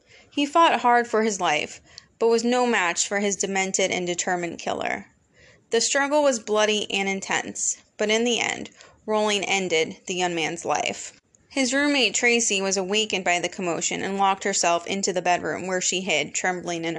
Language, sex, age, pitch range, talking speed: English, female, 20-39, 185-235 Hz, 180 wpm